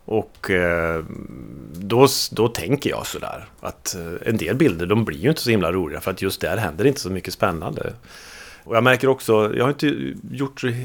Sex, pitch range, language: male, 95-125 Hz, Swedish